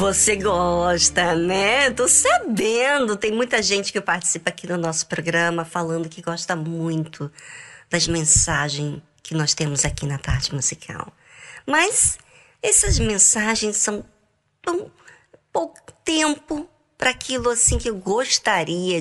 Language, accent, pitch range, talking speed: Portuguese, Brazilian, 165-245 Hz, 125 wpm